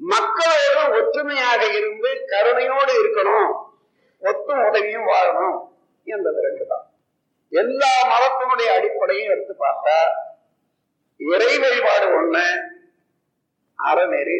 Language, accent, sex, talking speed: Tamil, native, male, 75 wpm